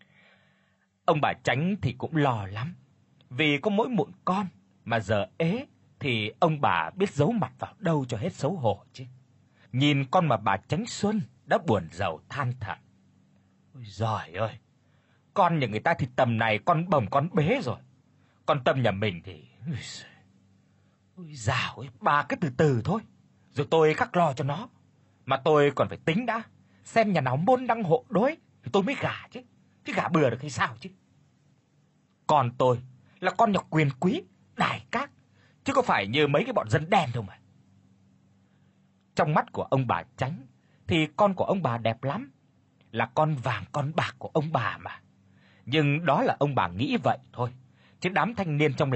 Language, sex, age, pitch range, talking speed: Vietnamese, male, 30-49, 120-170 Hz, 185 wpm